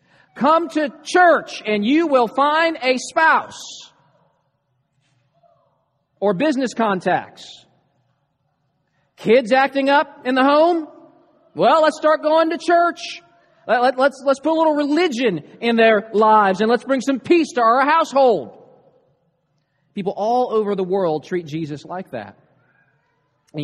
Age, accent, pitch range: 40-59, American, 155-245 Hz